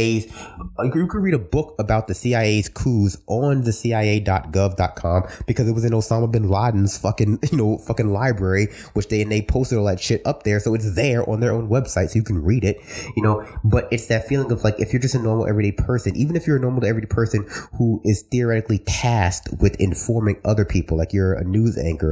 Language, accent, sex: English, American, male